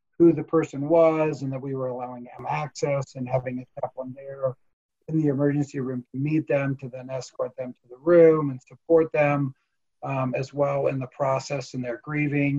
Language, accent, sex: English, American, male